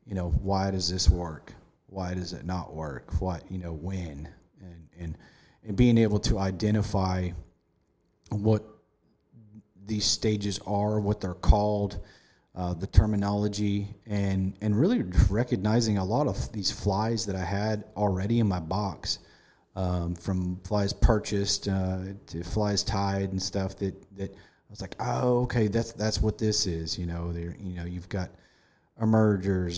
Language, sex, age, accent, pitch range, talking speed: English, male, 30-49, American, 90-105 Hz, 155 wpm